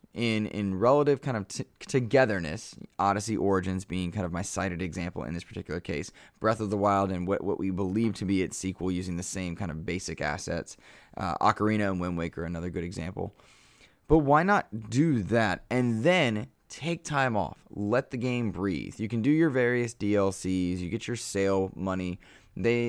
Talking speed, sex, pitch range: 190 wpm, male, 95-125 Hz